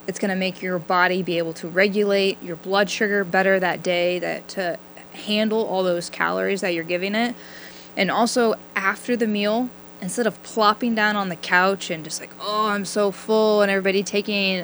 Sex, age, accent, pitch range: female, 10-29, American, 175-205 Hz